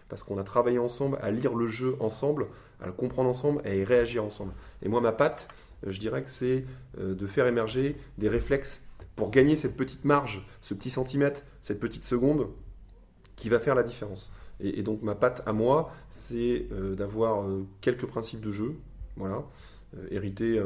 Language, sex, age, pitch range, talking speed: French, male, 20-39, 95-125 Hz, 180 wpm